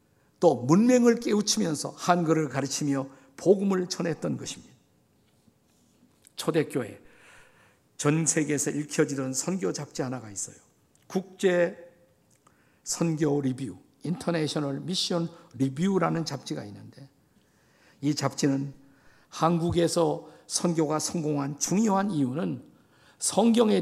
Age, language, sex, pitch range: 50-69, Korean, male, 140-185 Hz